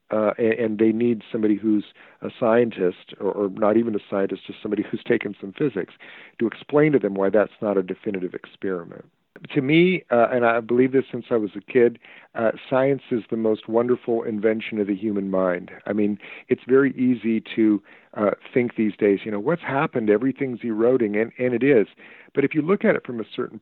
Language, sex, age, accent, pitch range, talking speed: English, male, 50-69, American, 105-130 Hz, 210 wpm